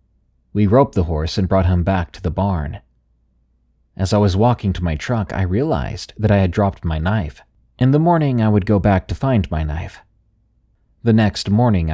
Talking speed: 200 wpm